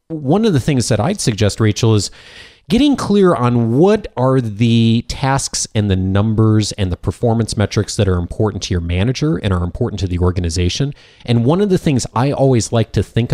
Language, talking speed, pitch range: English, 205 wpm, 95-120 Hz